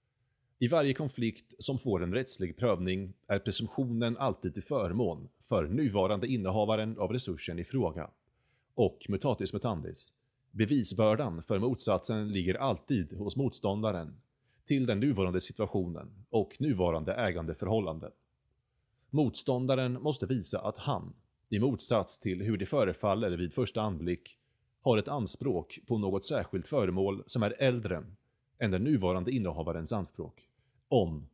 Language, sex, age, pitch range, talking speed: Swedish, male, 30-49, 95-125 Hz, 130 wpm